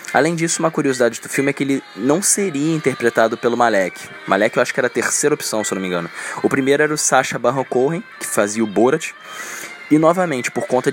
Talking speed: 230 wpm